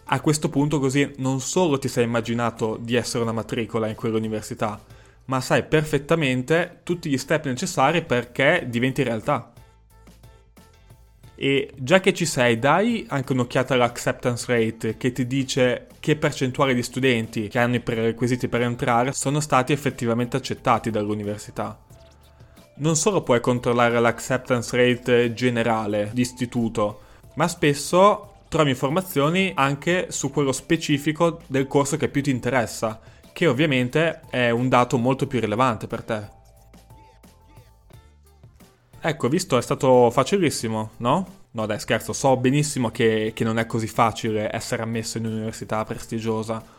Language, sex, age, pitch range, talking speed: Italian, male, 20-39, 115-145 Hz, 135 wpm